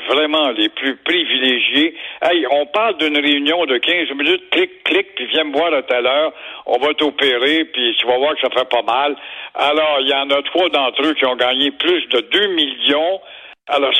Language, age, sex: French, 60-79, male